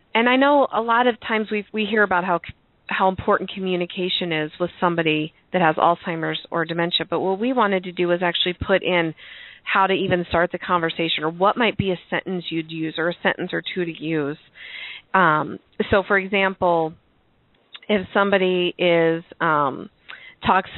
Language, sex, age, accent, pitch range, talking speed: English, female, 30-49, American, 165-195 Hz, 180 wpm